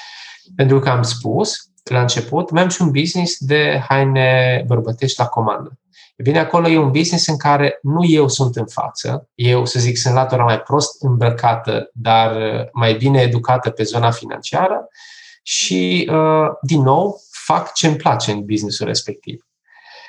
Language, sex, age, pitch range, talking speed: Romanian, male, 20-39, 115-150 Hz, 160 wpm